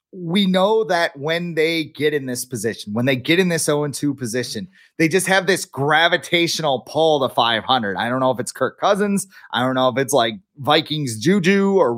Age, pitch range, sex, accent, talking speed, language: 30-49, 135-180 Hz, male, American, 200 wpm, English